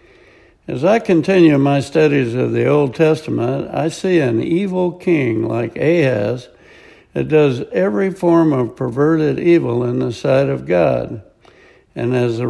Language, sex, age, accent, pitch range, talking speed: English, male, 60-79, American, 125-170 Hz, 150 wpm